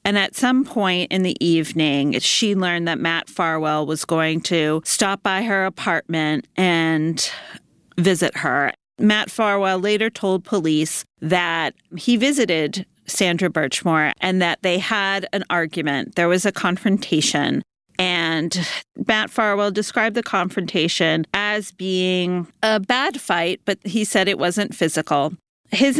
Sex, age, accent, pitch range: female, 40-59, American, 160-195 Hz